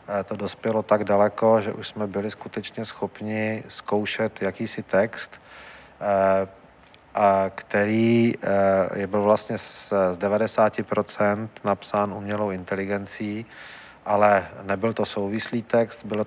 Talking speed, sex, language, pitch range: 100 wpm, male, Czech, 100-110 Hz